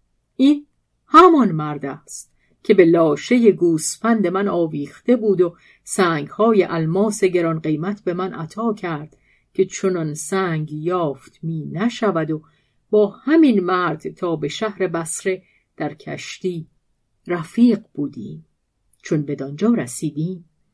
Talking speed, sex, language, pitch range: 120 wpm, female, Persian, 160-210 Hz